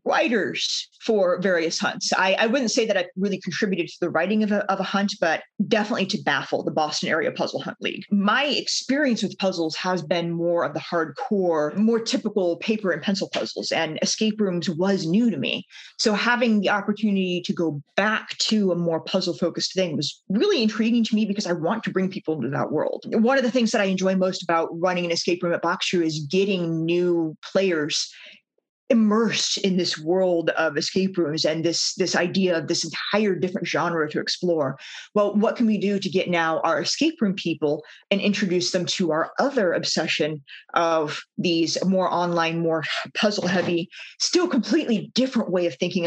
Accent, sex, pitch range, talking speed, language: American, female, 170-210 Hz, 195 wpm, English